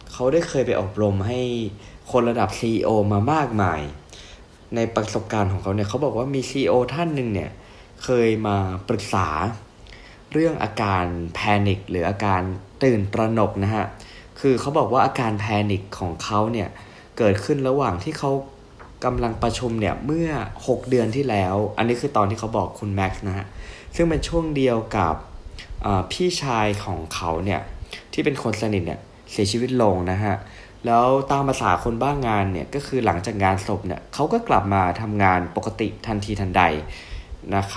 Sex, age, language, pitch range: male, 20-39, Thai, 95-120 Hz